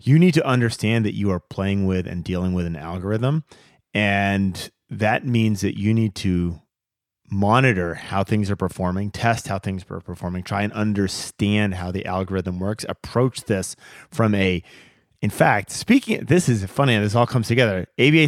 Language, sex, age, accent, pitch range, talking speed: English, male, 30-49, American, 100-125 Hz, 175 wpm